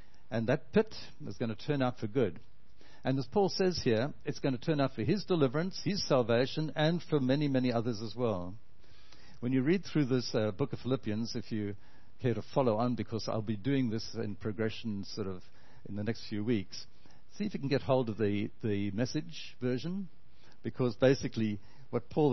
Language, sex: English, male